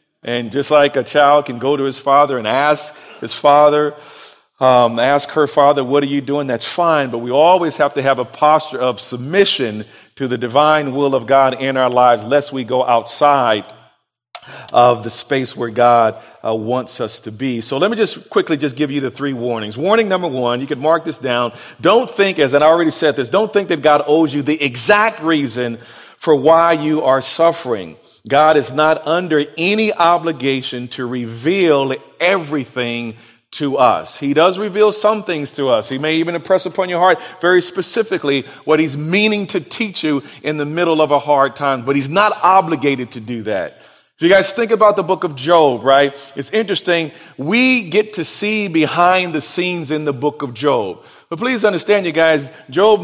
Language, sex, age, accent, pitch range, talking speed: English, male, 40-59, American, 135-170 Hz, 195 wpm